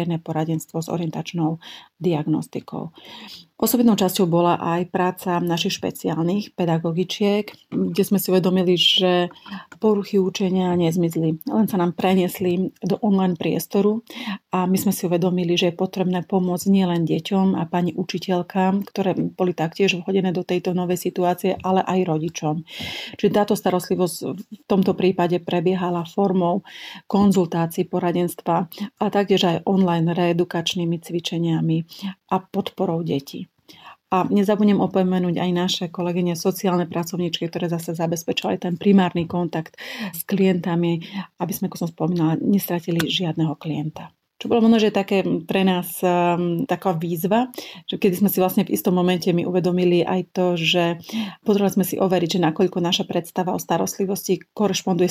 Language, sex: Slovak, female